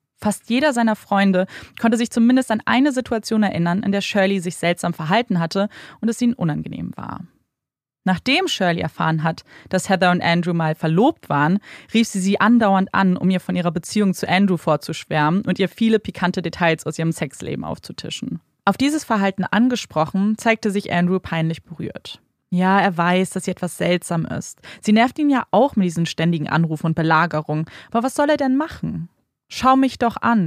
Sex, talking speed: female, 185 wpm